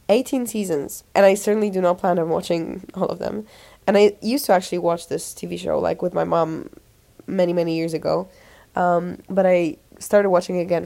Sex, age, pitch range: female, 10-29, 170-205 Hz